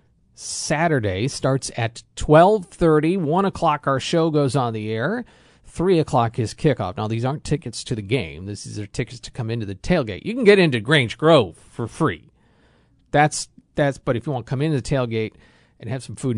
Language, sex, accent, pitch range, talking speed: English, male, American, 115-155 Hz, 205 wpm